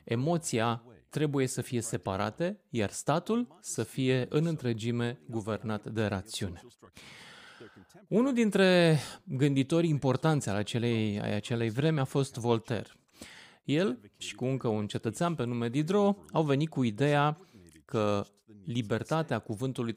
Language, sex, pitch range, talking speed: English, male, 110-155 Hz, 125 wpm